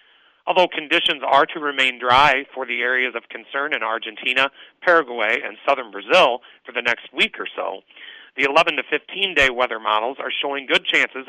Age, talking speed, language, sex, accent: 40-59, 180 wpm, English, male, American